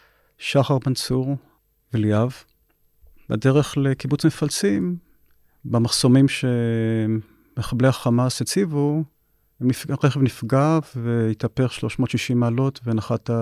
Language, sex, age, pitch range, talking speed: Hebrew, male, 40-59, 115-145 Hz, 75 wpm